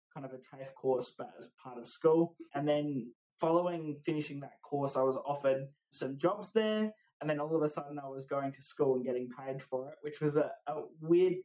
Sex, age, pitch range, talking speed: male, 20-39, 130-160 Hz, 225 wpm